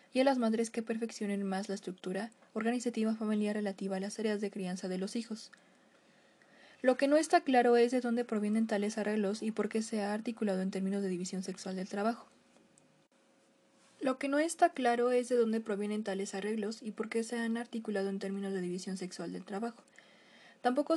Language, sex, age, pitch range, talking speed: Spanish, female, 20-39, 205-245 Hz, 195 wpm